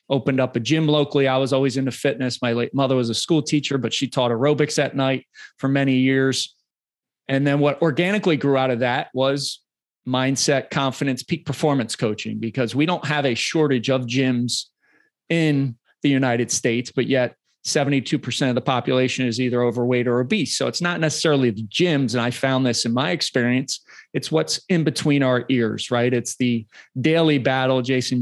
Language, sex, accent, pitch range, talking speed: English, male, American, 125-145 Hz, 185 wpm